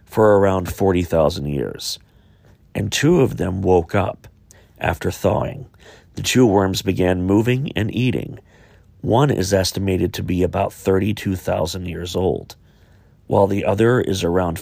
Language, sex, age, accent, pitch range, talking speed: English, male, 40-59, American, 95-155 Hz, 135 wpm